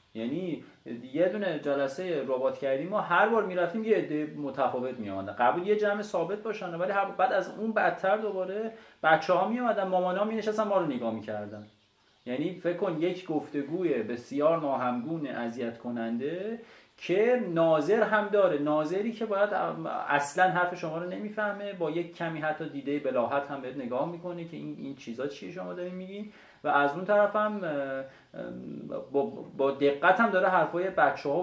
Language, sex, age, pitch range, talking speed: Persian, male, 30-49, 130-185 Hz, 170 wpm